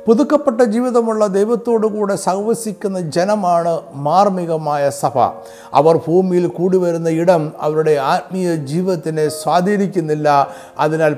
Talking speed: 95 wpm